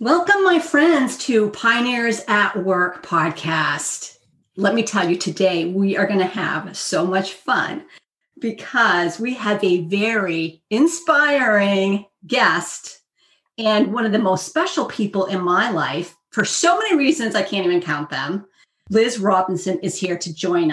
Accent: American